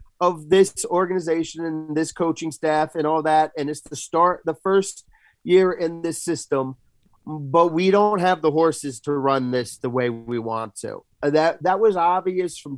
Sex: male